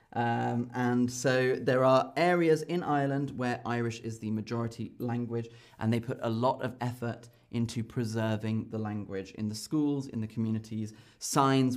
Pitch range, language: 115-145 Hz, English